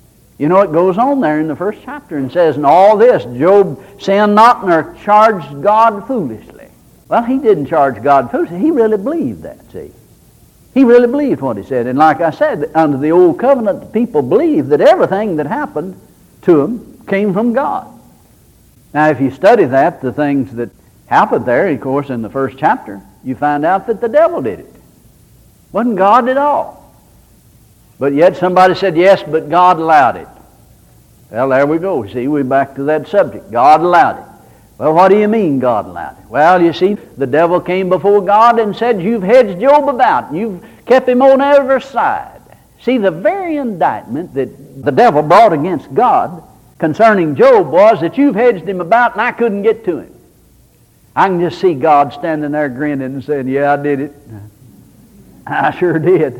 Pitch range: 150-240 Hz